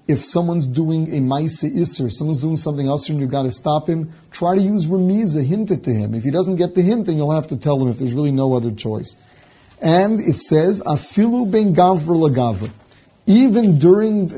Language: English